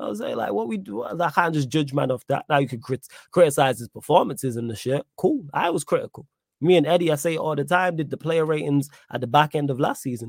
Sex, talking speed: male, 280 wpm